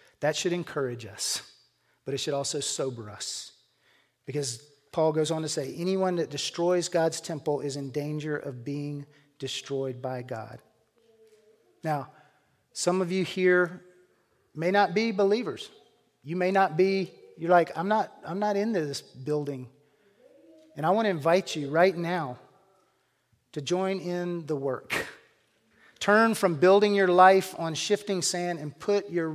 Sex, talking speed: male, 155 wpm